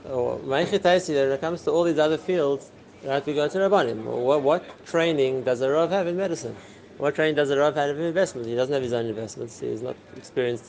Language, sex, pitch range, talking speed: English, male, 125-155 Hz, 225 wpm